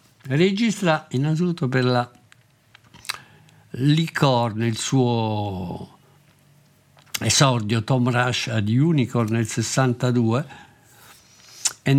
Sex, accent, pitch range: male, native, 120-150 Hz